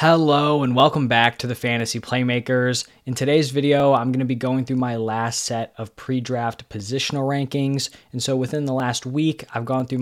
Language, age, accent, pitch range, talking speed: English, 20-39, American, 120-145 Hz, 200 wpm